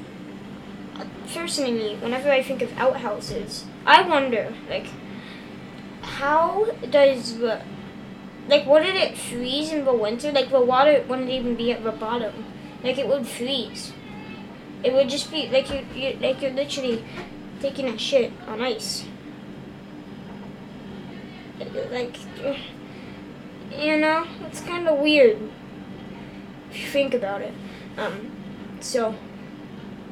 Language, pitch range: English, 240-300 Hz